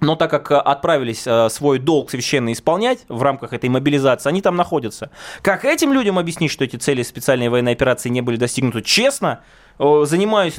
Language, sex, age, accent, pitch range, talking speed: Russian, male, 20-39, native, 140-185 Hz, 170 wpm